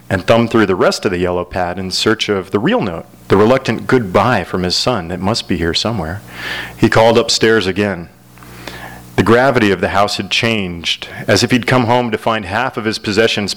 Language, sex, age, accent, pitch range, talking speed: English, male, 40-59, American, 95-115 Hz, 210 wpm